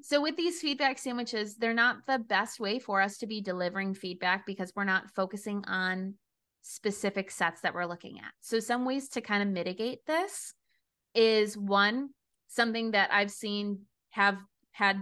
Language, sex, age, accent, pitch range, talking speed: English, female, 20-39, American, 195-260 Hz, 170 wpm